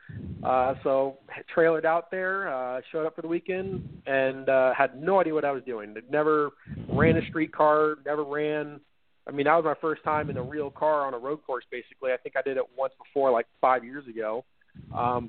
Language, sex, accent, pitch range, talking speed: English, male, American, 135-160 Hz, 215 wpm